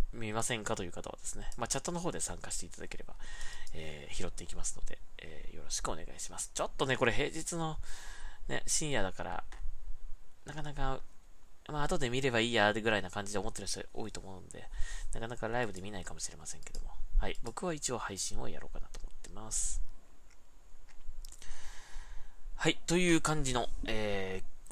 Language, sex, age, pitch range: Japanese, male, 20-39, 90-125 Hz